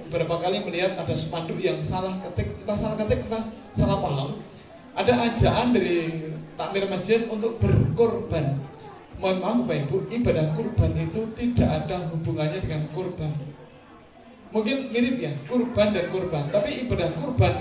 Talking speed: 145 wpm